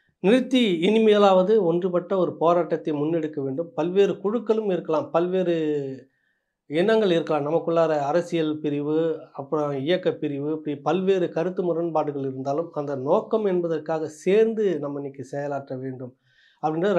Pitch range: 150-185 Hz